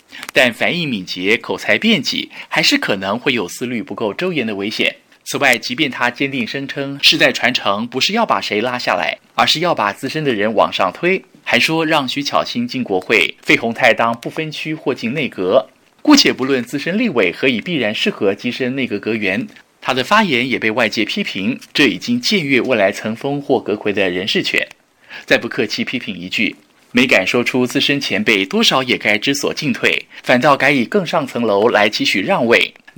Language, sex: Chinese, male